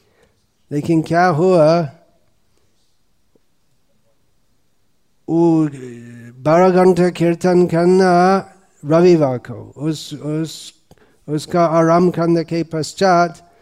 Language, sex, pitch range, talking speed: Hindi, male, 135-180 Hz, 60 wpm